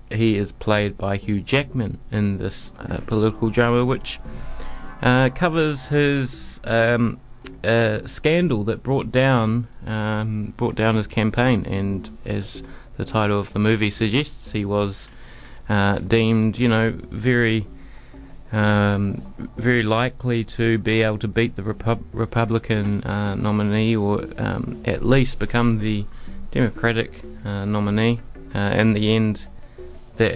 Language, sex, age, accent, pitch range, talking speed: English, male, 30-49, Australian, 100-120 Hz, 135 wpm